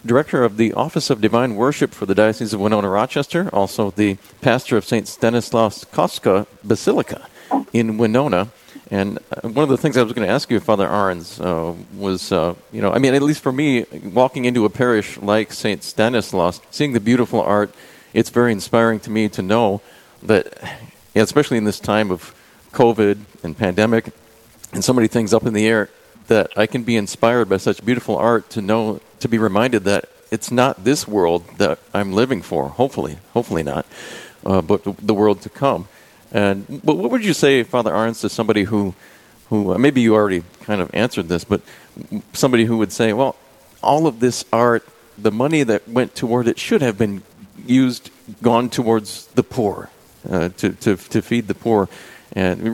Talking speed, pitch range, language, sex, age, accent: 190 wpm, 100-120 Hz, English, male, 40-59, American